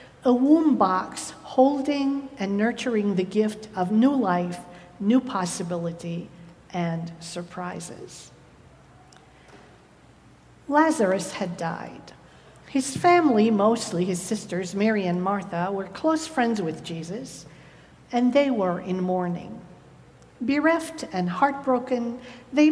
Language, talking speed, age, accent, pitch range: English, 105 wpm, 50-69, American, 175-255 Hz